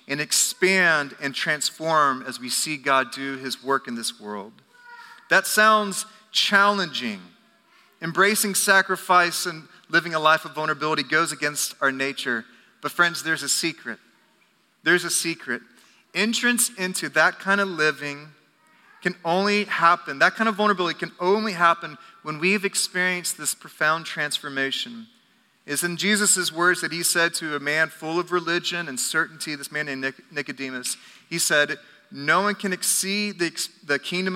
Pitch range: 140-185 Hz